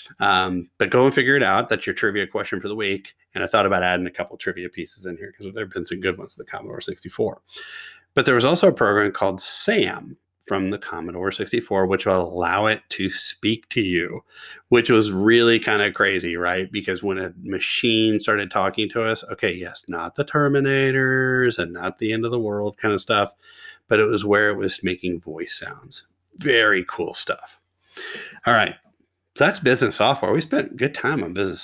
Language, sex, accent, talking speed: English, male, American, 205 wpm